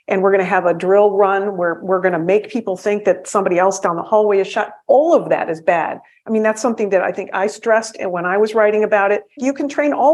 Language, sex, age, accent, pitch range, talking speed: English, female, 50-69, American, 200-255 Hz, 280 wpm